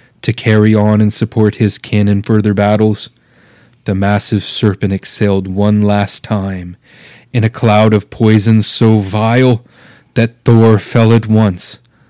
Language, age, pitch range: English, 30-49, 100-115 Hz